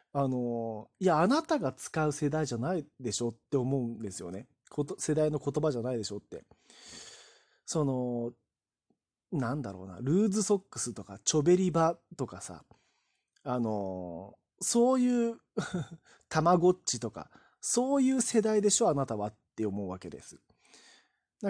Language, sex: Japanese, male